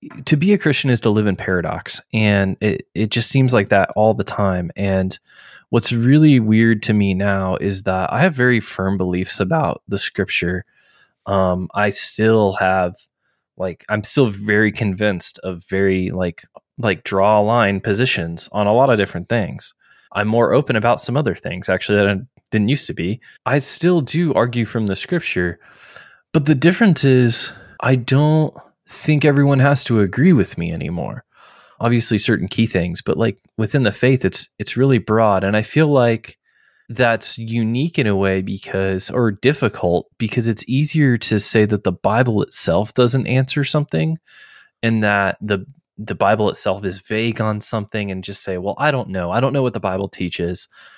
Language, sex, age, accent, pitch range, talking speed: English, male, 20-39, American, 95-125 Hz, 180 wpm